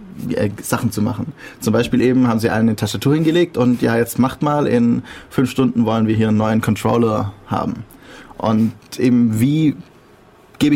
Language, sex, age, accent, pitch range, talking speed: German, male, 30-49, German, 110-125 Hz, 180 wpm